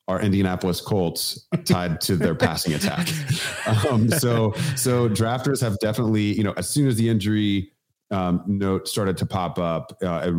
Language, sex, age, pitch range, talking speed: English, male, 30-49, 80-100 Hz, 170 wpm